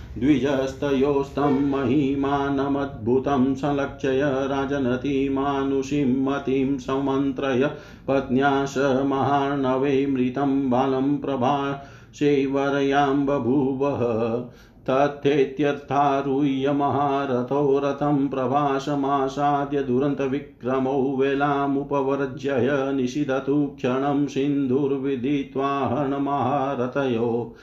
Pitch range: 130-140 Hz